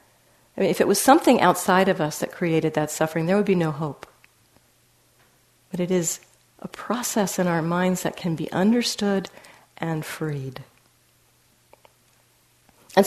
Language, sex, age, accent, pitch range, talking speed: English, female, 50-69, American, 165-215 Hz, 150 wpm